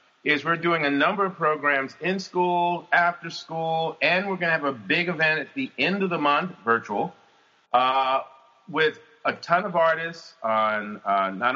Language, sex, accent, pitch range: English, male, American, 120-160 Hz